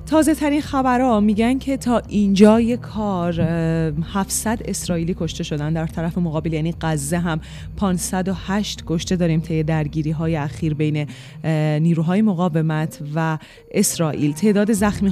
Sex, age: female, 30-49